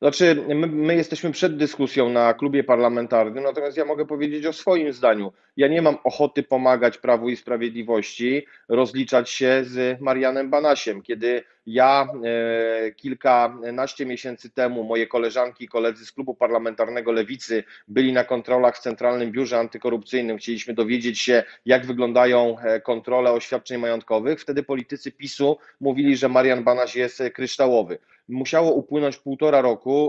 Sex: male